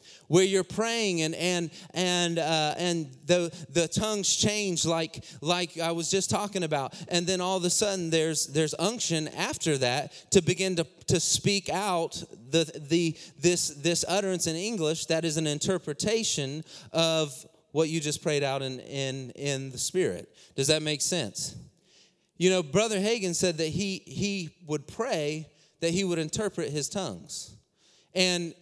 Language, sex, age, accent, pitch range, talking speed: English, male, 30-49, American, 150-185 Hz, 165 wpm